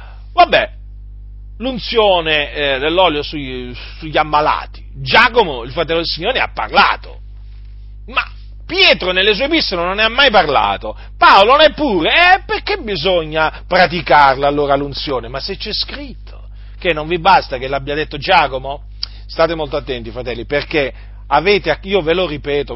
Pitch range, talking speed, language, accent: 140-210 Hz, 145 wpm, Italian, native